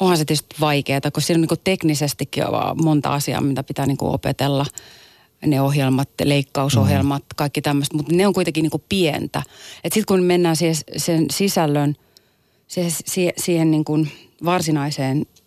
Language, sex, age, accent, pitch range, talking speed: Finnish, female, 30-49, native, 140-160 Hz, 155 wpm